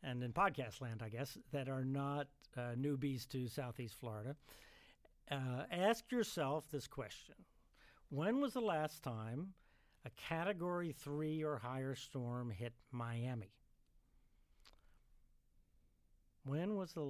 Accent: American